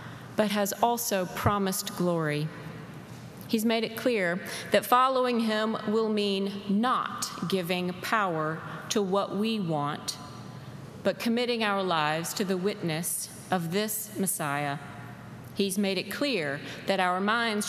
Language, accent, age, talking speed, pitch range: English, American, 40-59, 130 wpm, 170-220 Hz